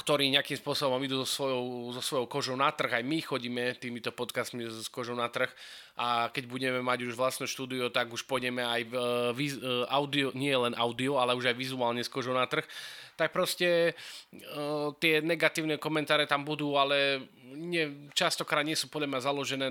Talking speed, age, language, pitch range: 185 wpm, 20-39, Slovak, 125-175 Hz